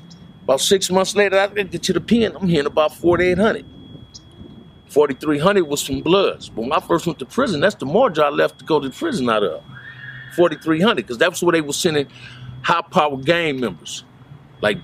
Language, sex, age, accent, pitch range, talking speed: English, male, 50-69, American, 125-180 Hz, 200 wpm